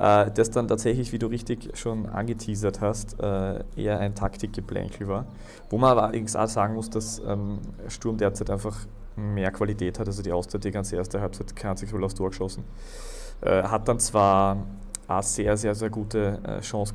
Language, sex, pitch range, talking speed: German, male, 100-115 Hz, 165 wpm